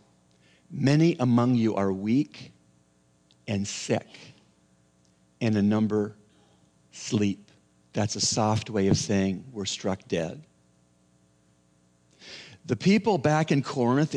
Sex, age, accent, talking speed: male, 50-69, American, 105 wpm